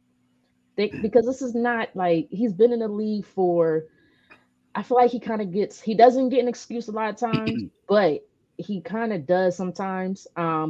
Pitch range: 160-215 Hz